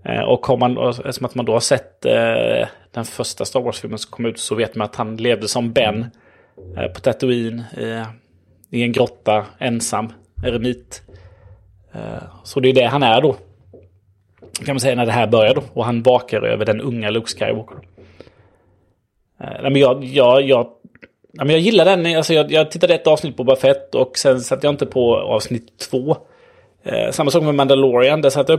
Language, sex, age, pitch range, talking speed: Swedish, male, 20-39, 110-135 Hz, 185 wpm